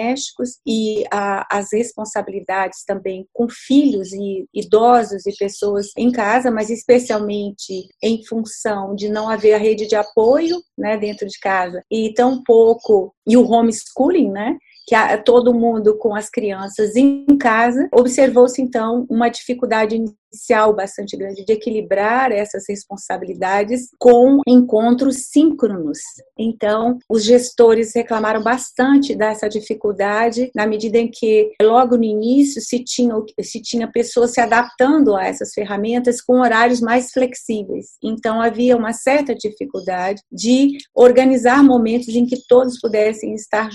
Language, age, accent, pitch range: Portuguese, 30-49, Brazilian, 210-250 Hz